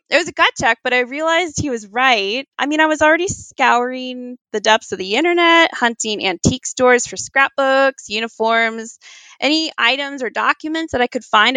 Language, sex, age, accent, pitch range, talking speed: English, female, 20-39, American, 215-295 Hz, 185 wpm